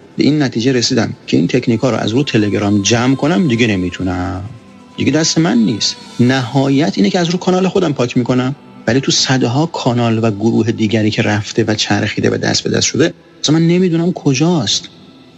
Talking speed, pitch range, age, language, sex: 185 wpm, 110-145 Hz, 40-59, Persian, male